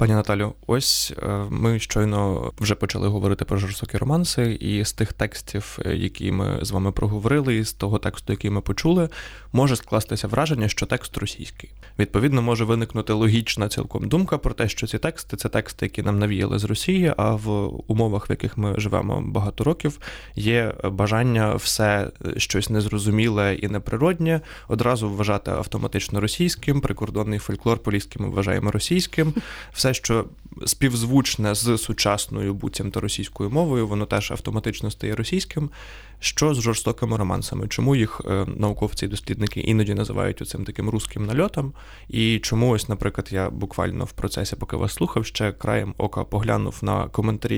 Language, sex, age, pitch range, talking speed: Ukrainian, male, 20-39, 105-120 Hz, 155 wpm